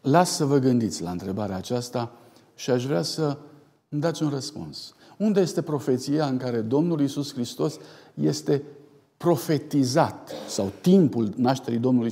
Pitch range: 120-165 Hz